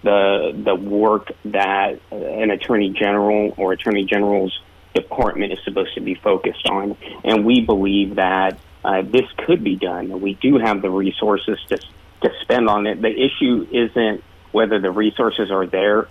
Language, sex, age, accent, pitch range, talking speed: English, male, 30-49, American, 100-110 Hz, 165 wpm